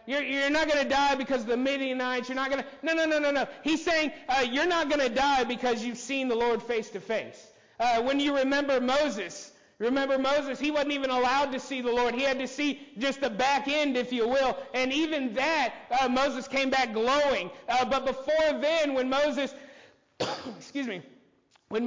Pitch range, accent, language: 215-285 Hz, American, English